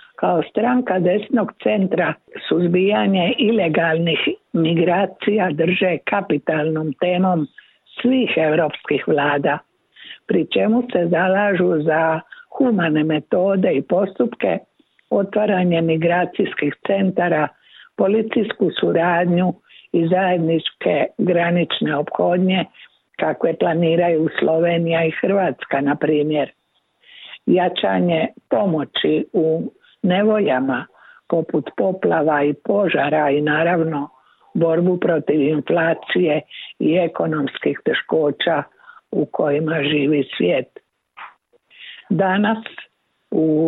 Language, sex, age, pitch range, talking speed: Croatian, female, 60-79, 160-200 Hz, 80 wpm